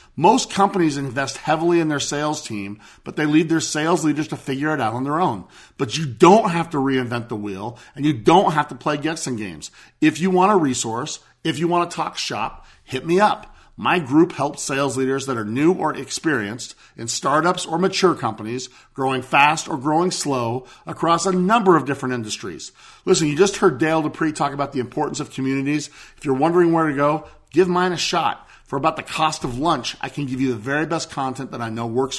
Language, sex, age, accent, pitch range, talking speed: English, male, 50-69, American, 125-170 Hz, 220 wpm